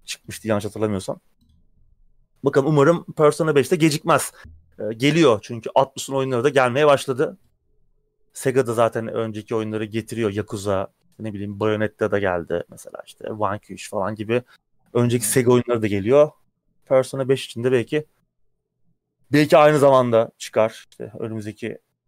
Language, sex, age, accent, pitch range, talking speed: Turkish, male, 30-49, native, 110-150 Hz, 130 wpm